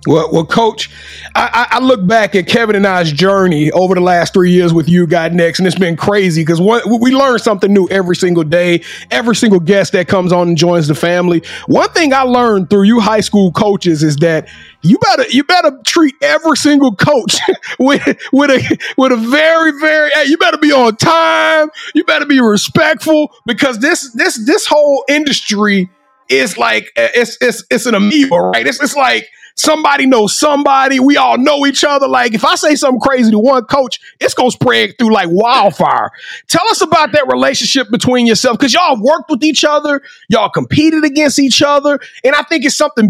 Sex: male